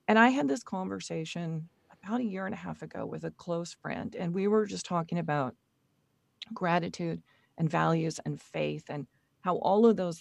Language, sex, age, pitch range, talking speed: English, female, 40-59, 165-200 Hz, 190 wpm